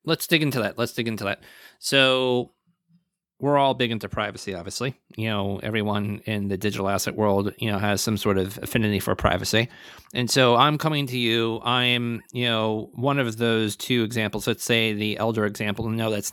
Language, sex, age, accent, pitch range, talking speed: English, male, 30-49, American, 105-125 Hz, 200 wpm